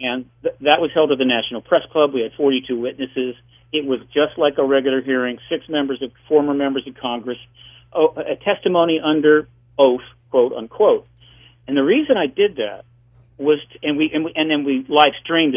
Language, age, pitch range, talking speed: English, 50-69, 120-155 Hz, 175 wpm